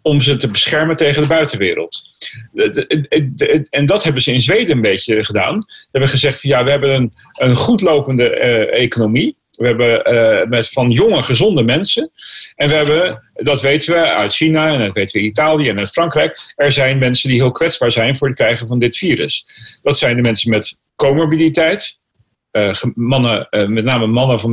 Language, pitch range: Dutch, 120-155 Hz